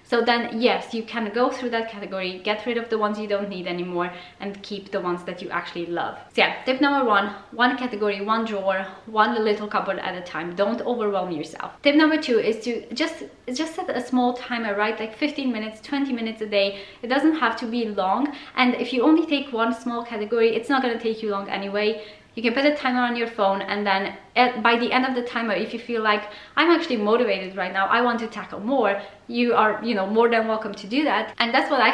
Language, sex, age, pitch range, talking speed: English, female, 20-39, 200-245 Hz, 240 wpm